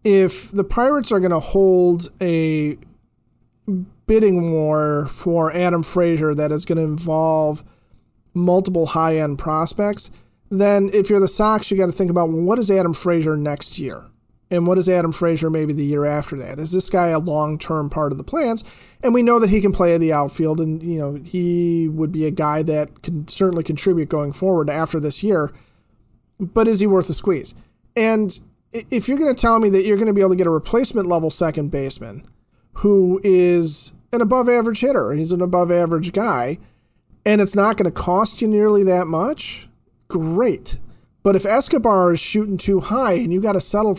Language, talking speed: English, 195 wpm